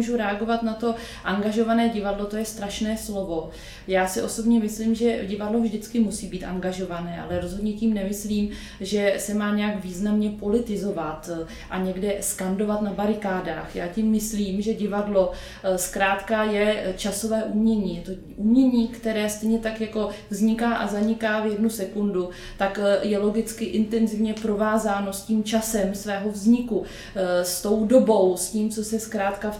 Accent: native